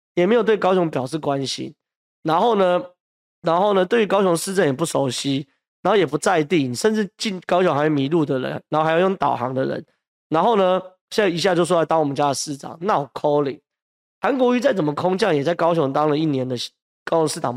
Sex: male